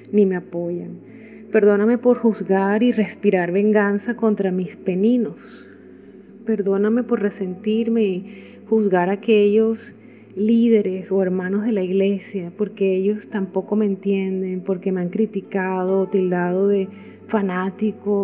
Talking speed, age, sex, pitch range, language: 120 wpm, 30-49, female, 185-210 Hz, Spanish